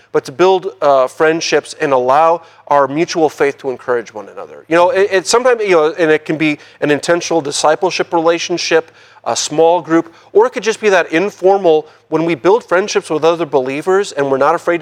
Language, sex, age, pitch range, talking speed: English, male, 40-59, 140-170 Hz, 200 wpm